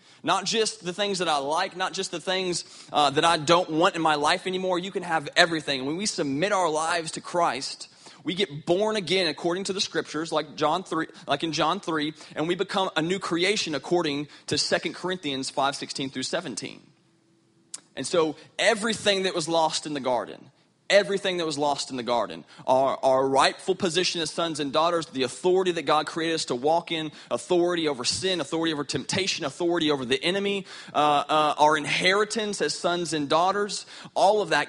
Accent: American